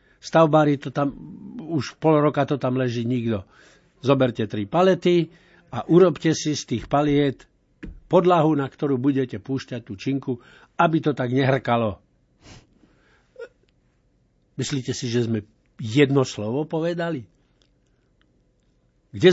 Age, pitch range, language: 60-79, 120-165 Hz, Slovak